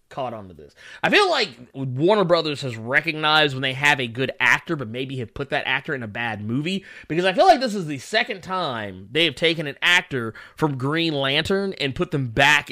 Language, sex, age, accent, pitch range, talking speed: English, male, 30-49, American, 125-165 Hz, 220 wpm